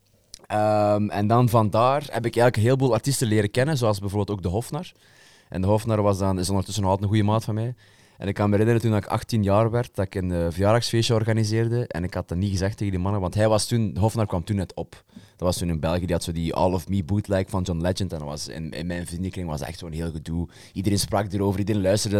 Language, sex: Dutch, male